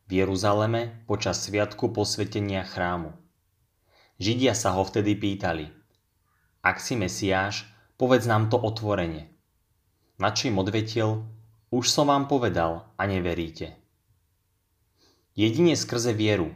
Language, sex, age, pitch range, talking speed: Slovak, male, 20-39, 95-115 Hz, 110 wpm